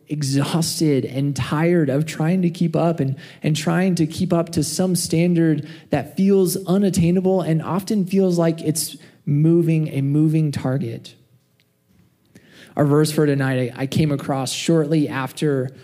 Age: 20-39